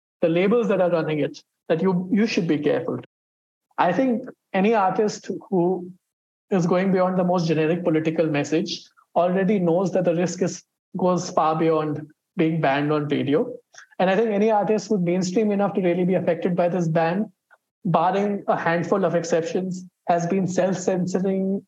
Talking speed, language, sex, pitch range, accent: 165 wpm, English, male, 160-190 Hz, Indian